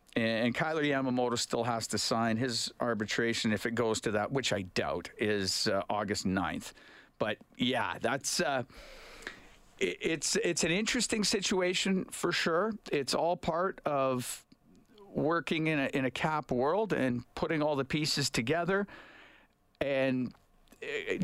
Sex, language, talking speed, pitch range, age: male, English, 145 wpm, 115-160 Hz, 50-69